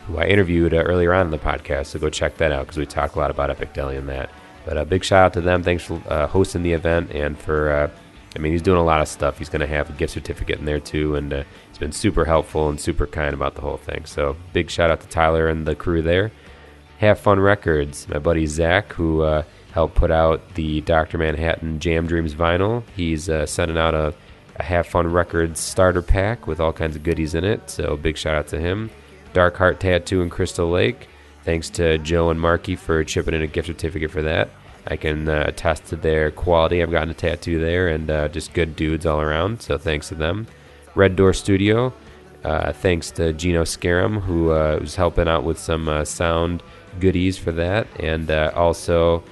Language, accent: English, American